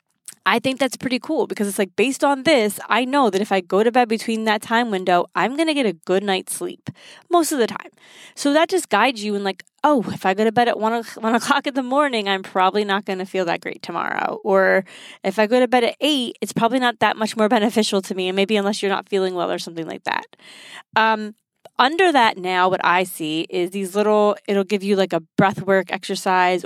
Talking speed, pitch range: 250 wpm, 185-235 Hz